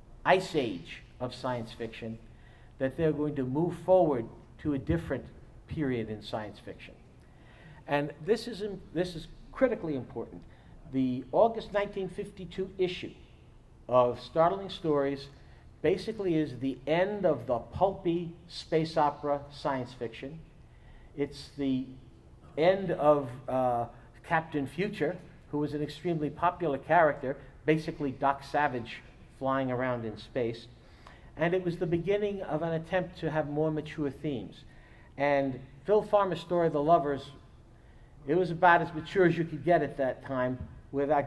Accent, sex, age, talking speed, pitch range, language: American, male, 50-69, 140 wpm, 130-170 Hz, English